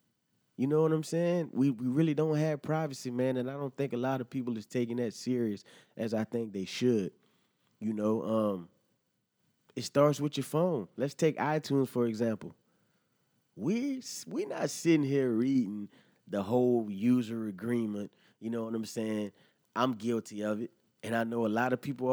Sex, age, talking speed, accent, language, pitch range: male, 20-39, 185 wpm, American, English, 110-135 Hz